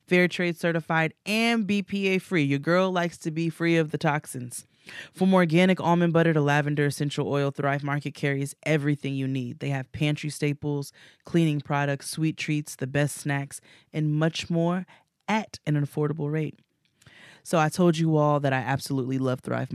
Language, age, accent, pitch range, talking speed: English, 20-39, American, 140-170 Hz, 175 wpm